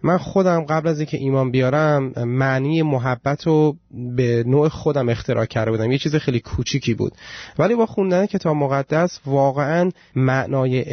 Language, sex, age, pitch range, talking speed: Persian, male, 30-49, 130-165 Hz, 160 wpm